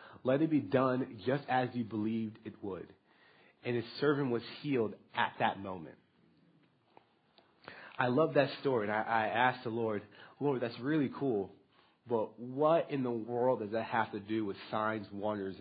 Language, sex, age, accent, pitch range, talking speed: English, male, 40-59, American, 115-145 Hz, 175 wpm